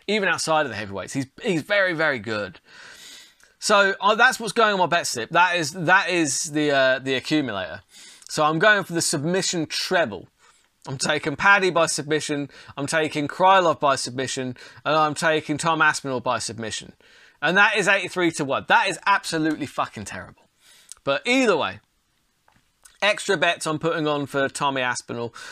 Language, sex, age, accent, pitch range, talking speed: English, male, 20-39, British, 155-225 Hz, 170 wpm